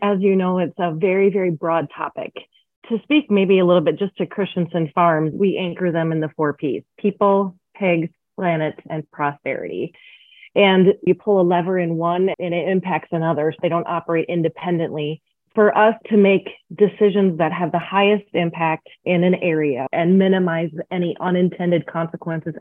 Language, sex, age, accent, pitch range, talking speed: English, female, 30-49, American, 155-185 Hz, 175 wpm